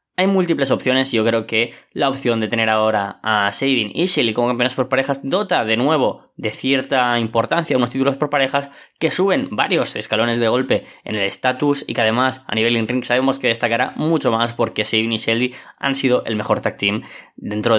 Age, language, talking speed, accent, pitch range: 20-39, Spanish, 205 wpm, Spanish, 110-135 Hz